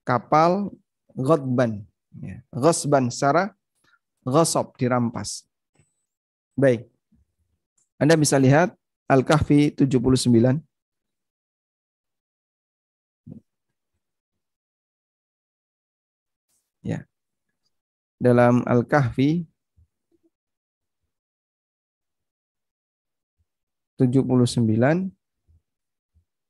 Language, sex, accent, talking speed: Indonesian, male, native, 40 wpm